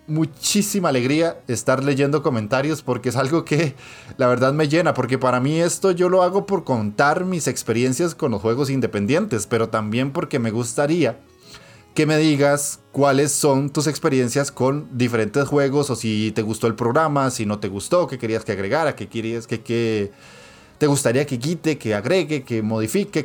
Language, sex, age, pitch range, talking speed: Spanish, male, 20-39, 110-155 Hz, 175 wpm